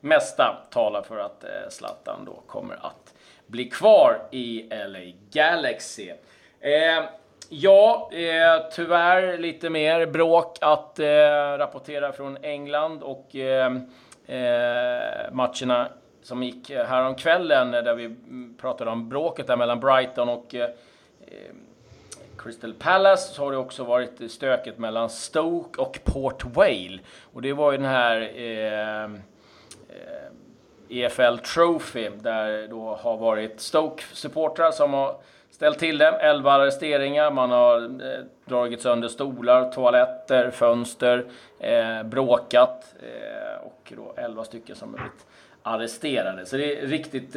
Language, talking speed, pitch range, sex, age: Swedish, 130 wpm, 120-165 Hz, male, 30-49